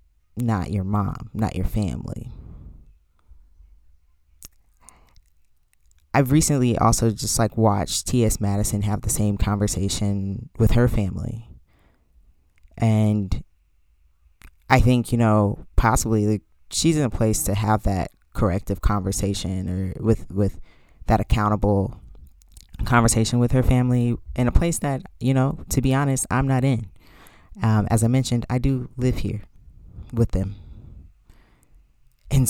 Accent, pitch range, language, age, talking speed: American, 90-120 Hz, English, 20-39, 125 wpm